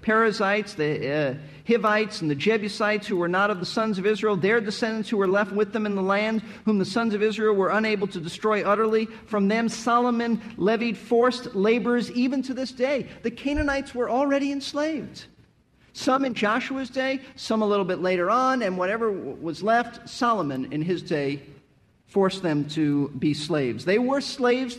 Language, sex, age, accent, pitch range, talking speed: English, male, 50-69, American, 165-225 Hz, 185 wpm